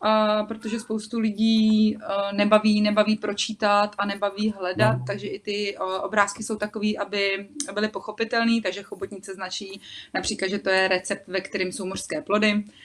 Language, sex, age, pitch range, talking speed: Czech, female, 30-49, 200-220 Hz, 150 wpm